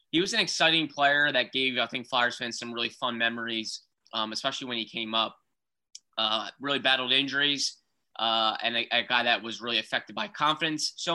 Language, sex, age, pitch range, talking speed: English, male, 20-39, 115-130 Hz, 200 wpm